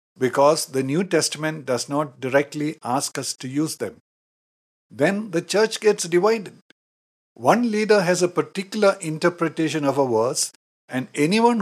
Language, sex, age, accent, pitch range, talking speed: English, male, 60-79, Indian, 140-190 Hz, 145 wpm